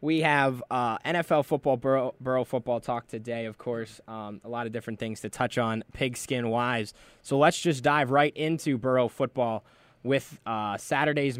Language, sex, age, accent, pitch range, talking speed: English, male, 10-29, American, 120-150 Hz, 175 wpm